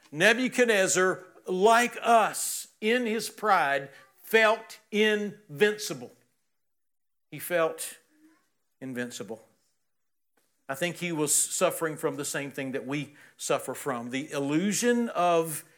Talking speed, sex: 105 wpm, male